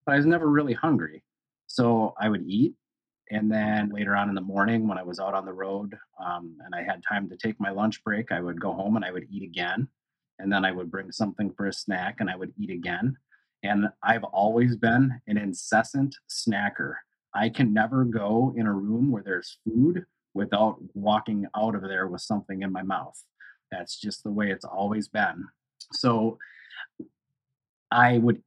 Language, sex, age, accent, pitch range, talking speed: English, male, 30-49, American, 100-120 Hz, 200 wpm